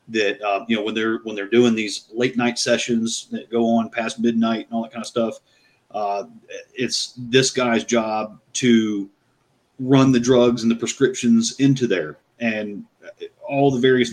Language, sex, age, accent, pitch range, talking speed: English, male, 30-49, American, 115-135 Hz, 180 wpm